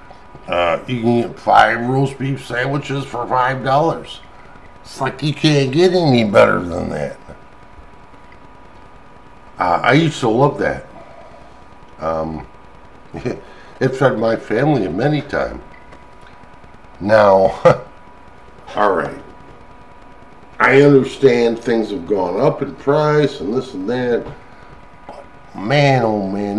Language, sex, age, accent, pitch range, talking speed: English, male, 60-79, American, 105-150 Hz, 110 wpm